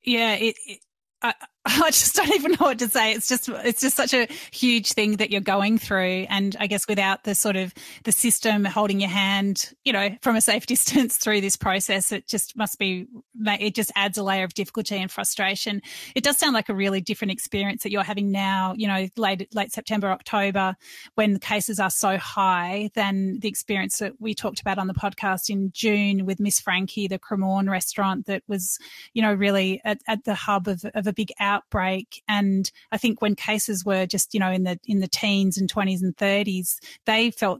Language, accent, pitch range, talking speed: English, Australian, 195-220 Hz, 215 wpm